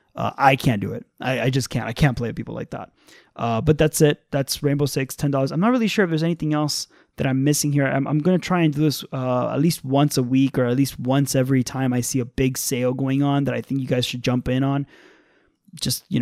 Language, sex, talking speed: English, male, 275 wpm